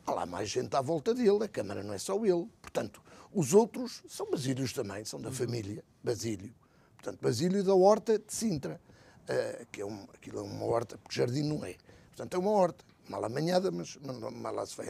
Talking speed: 215 wpm